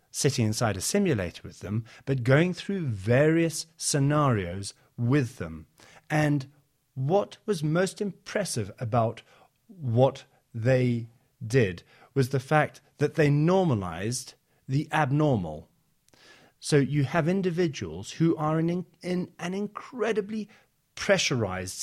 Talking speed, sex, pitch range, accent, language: 115 wpm, male, 120-160 Hz, British, English